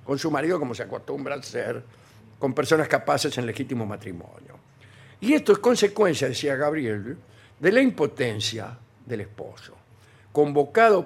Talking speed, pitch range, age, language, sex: 140 wpm, 125-190 Hz, 60-79, Spanish, male